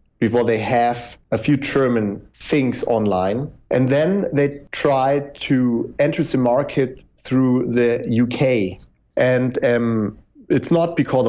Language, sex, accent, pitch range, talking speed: English, male, German, 110-140 Hz, 130 wpm